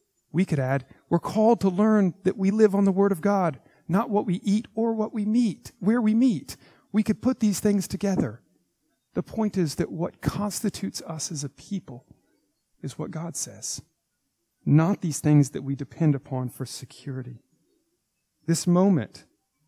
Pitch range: 130-170 Hz